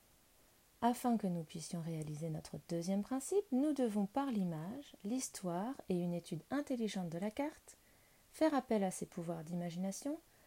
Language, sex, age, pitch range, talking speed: French, female, 30-49, 180-245 Hz, 150 wpm